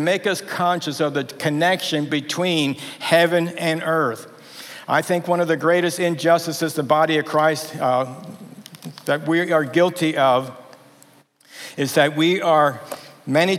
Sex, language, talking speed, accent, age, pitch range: male, English, 140 wpm, American, 60-79, 150-180 Hz